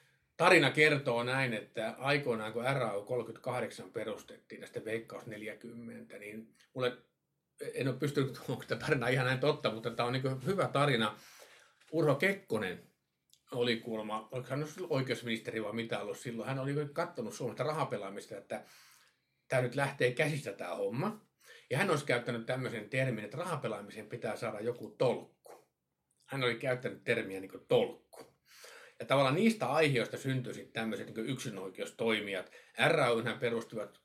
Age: 50-69